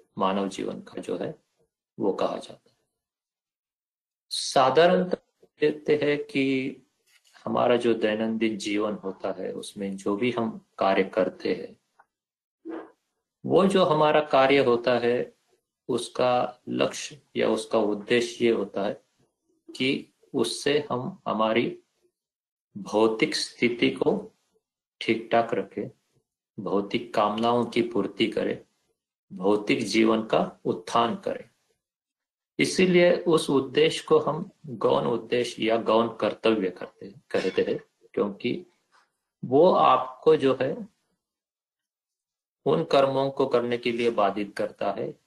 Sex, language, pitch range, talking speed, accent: male, Hindi, 110-160 Hz, 115 wpm, native